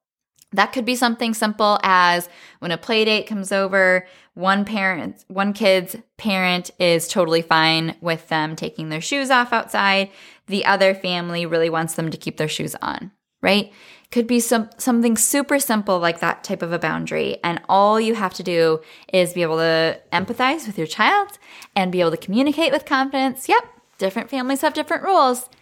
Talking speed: 185 wpm